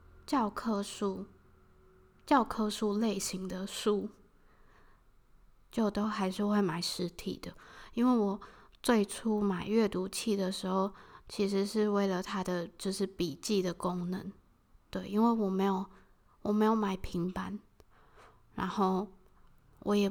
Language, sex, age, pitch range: Chinese, female, 20-39, 185-210 Hz